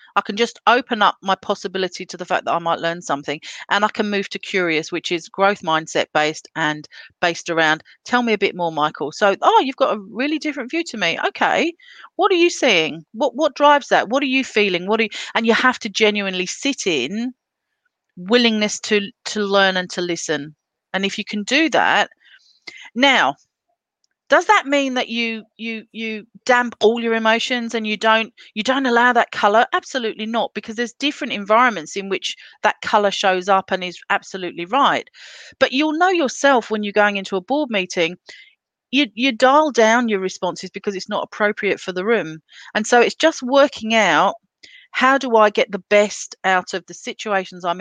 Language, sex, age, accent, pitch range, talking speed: English, female, 40-59, British, 190-255 Hz, 200 wpm